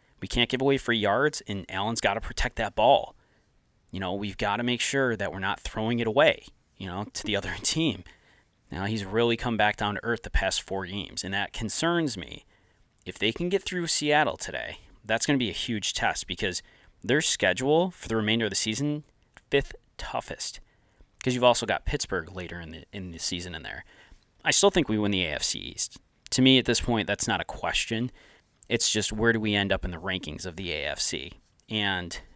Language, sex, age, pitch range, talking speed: English, male, 20-39, 100-135 Hz, 215 wpm